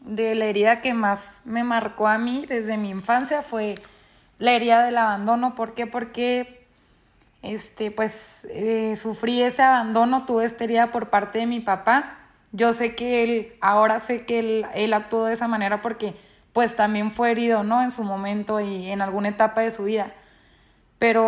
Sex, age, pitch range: female, 20-39, 210-240 Hz